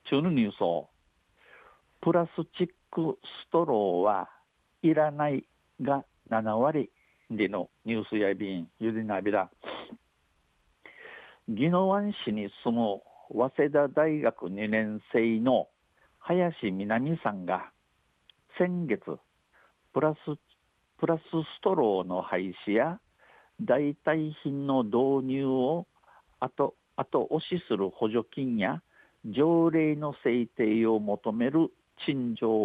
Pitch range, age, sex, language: 110-145 Hz, 50-69, male, Japanese